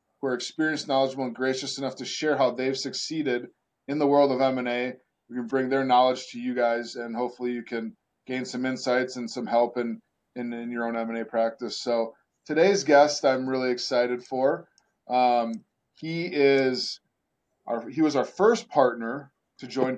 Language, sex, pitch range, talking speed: English, male, 125-145 Hz, 185 wpm